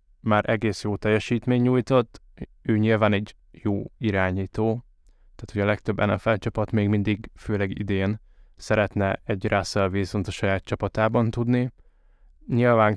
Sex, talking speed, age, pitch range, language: male, 135 wpm, 20-39, 100-115 Hz, Hungarian